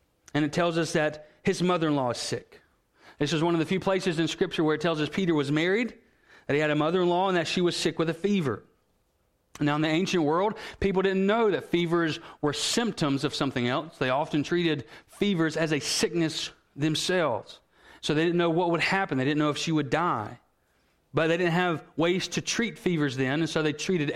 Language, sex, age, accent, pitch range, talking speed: English, male, 40-59, American, 145-180 Hz, 220 wpm